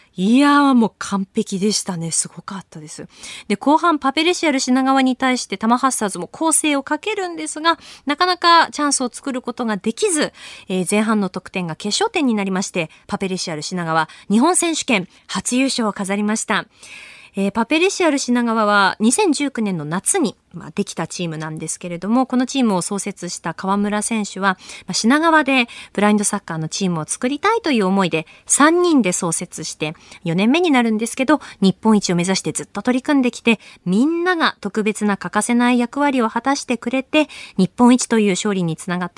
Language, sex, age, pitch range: Japanese, female, 20-39, 185-255 Hz